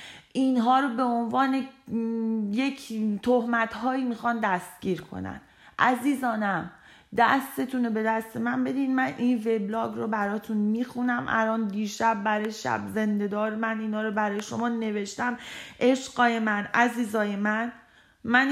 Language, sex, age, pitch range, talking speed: Persian, female, 30-49, 210-240 Hz, 125 wpm